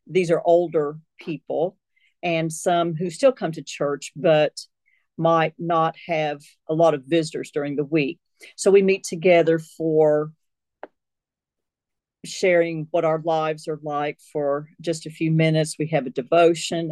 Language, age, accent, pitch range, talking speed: English, 50-69, American, 155-175 Hz, 150 wpm